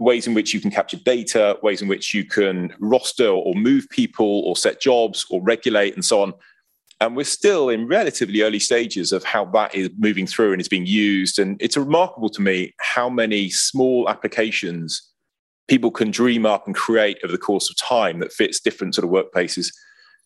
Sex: male